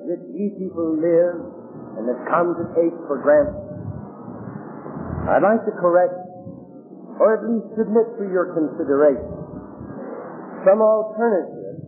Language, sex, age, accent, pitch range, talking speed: English, male, 50-69, American, 170-220 Hz, 120 wpm